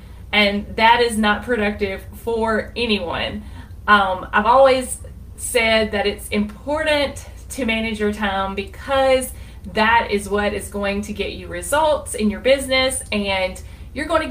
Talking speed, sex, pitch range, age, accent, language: 145 wpm, female, 205-250 Hz, 30-49, American, English